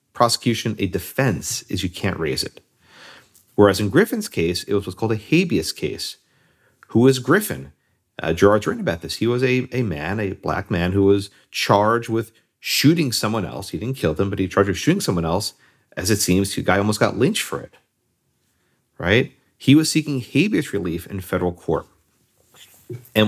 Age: 40-59